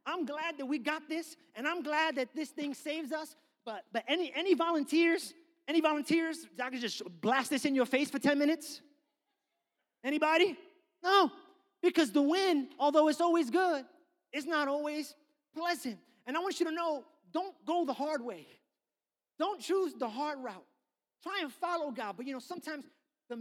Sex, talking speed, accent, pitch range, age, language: male, 180 wpm, American, 245-315 Hz, 30-49, English